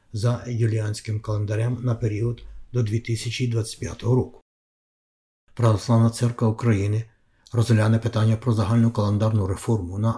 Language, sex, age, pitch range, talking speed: Ukrainian, male, 60-79, 110-120 Hz, 105 wpm